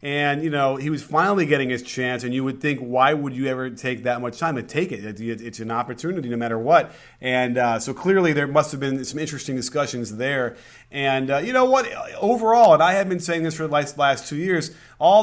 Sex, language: male, English